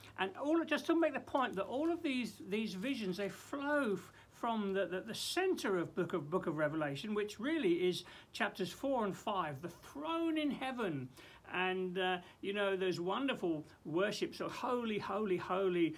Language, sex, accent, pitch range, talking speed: English, male, British, 170-250 Hz, 185 wpm